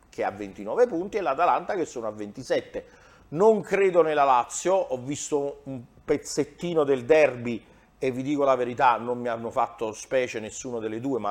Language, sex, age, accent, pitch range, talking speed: Italian, male, 40-59, native, 105-145 Hz, 185 wpm